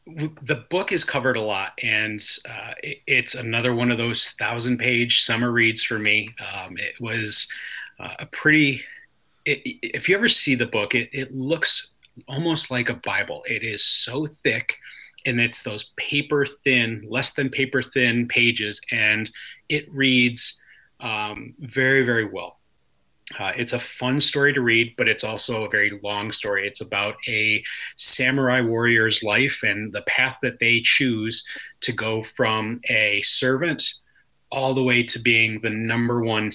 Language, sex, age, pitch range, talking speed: English, male, 30-49, 110-130 Hz, 160 wpm